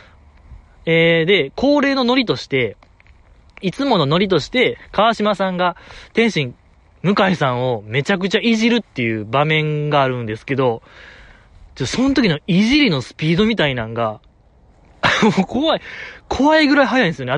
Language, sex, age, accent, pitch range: Japanese, male, 20-39, native, 125-205 Hz